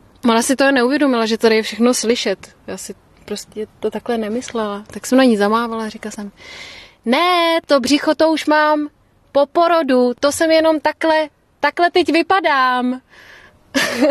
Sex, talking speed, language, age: female, 160 wpm, Czech, 30-49